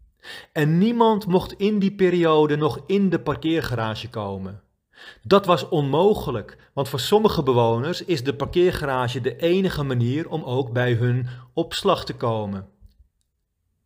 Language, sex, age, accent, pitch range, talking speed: Dutch, male, 40-59, Dutch, 115-170 Hz, 135 wpm